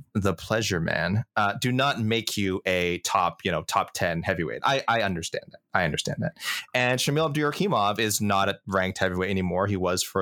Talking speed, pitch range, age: 200 wpm, 95-120 Hz, 20-39